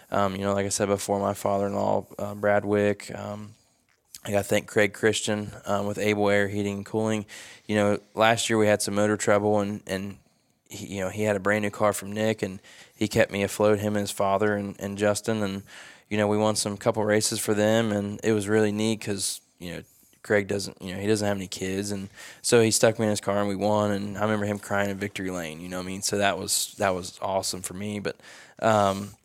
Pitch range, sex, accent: 100-105 Hz, male, American